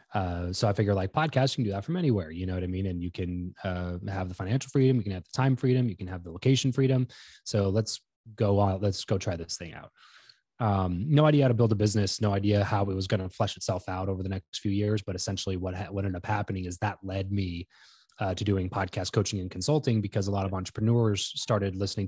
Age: 20-39